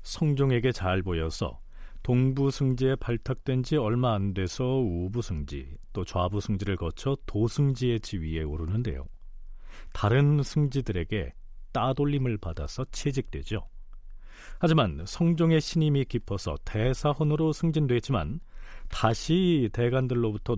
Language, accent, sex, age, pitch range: Korean, native, male, 40-59, 90-140 Hz